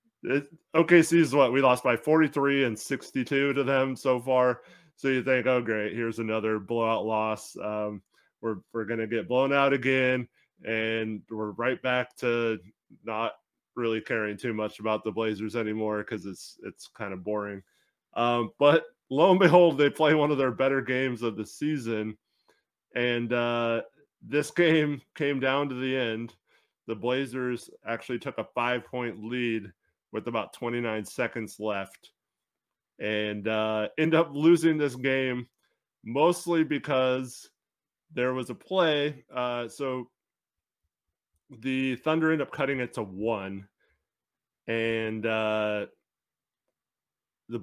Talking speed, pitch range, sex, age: 140 wpm, 110-140 Hz, male, 20-39